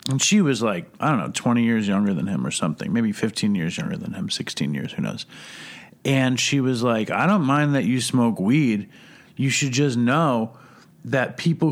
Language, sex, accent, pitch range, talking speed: English, male, American, 110-135 Hz, 210 wpm